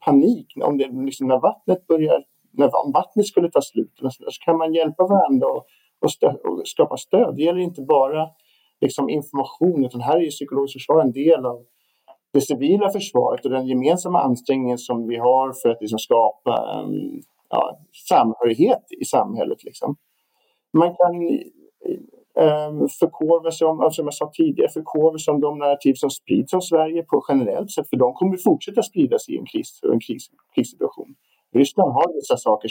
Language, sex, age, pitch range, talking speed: Swedish, male, 50-69, 130-200 Hz, 170 wpm